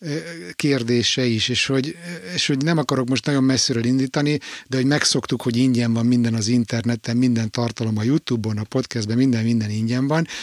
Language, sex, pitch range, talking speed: Hungarian, male, 120-145 Hz, 175 wpm